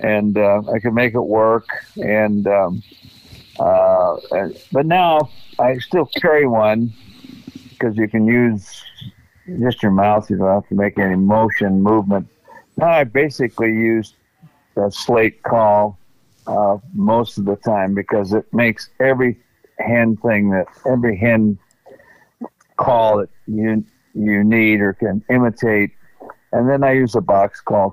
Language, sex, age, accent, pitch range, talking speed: English, male, 50-69, American, 100-120 Hz, 145 wpm